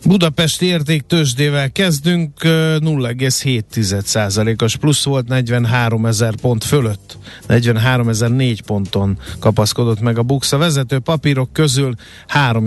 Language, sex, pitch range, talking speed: Hungarian, male, 110-140 Hz, 90 wpm